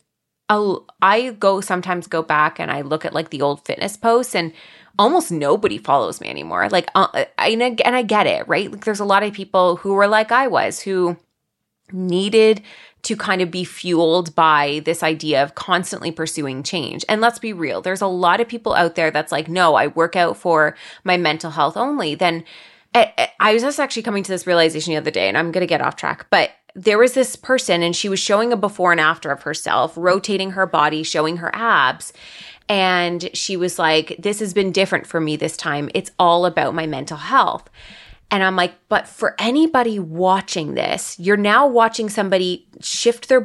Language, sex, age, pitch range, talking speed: English, female, 20-39, 165-215 Hz, 205 wpm